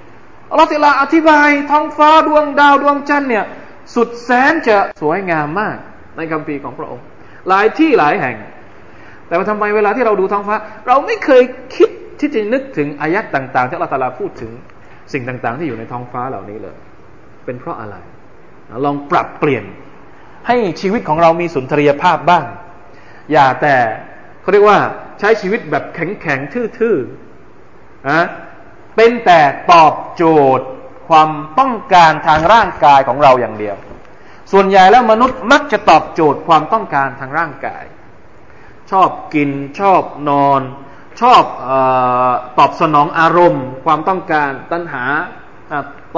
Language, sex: Thai, male